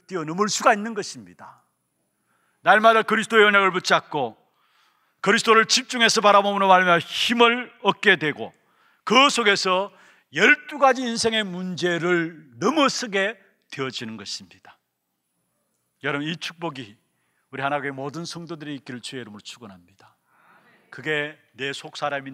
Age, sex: 40-59, male